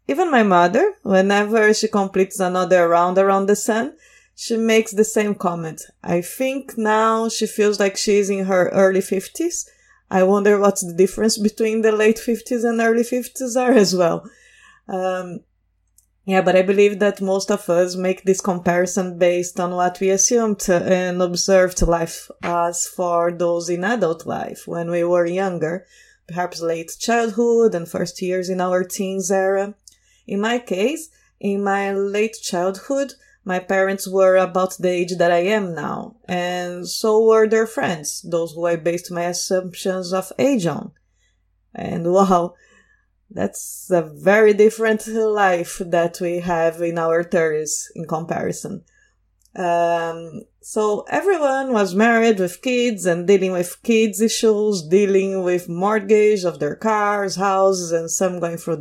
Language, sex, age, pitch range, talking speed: English, female, 20-39, 175-215 Hz, 155 wpm